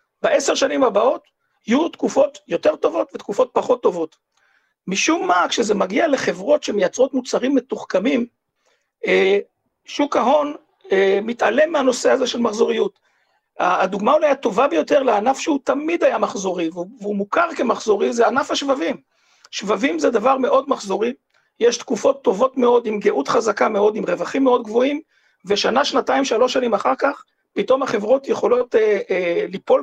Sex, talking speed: male, 140 wpm